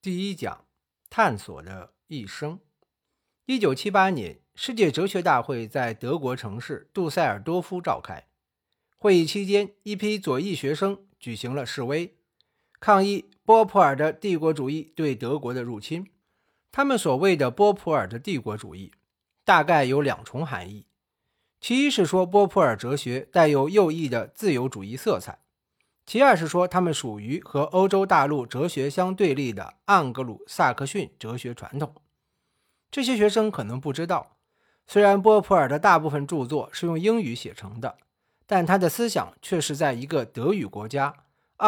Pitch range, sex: 130-195 Hz, male